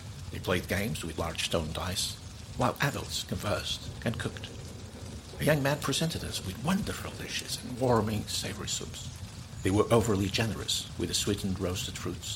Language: English